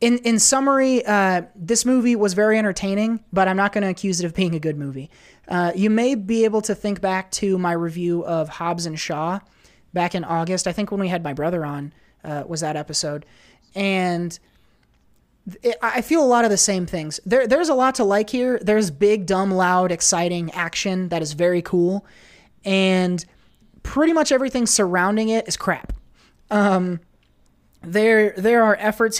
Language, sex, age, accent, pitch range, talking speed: English, male, 20-39, American, 175-210 Hz, 185 wpm